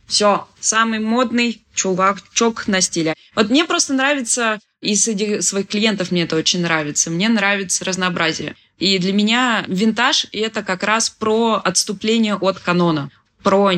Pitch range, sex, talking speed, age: 175-225 Hz, female, 150 wpm, 20-39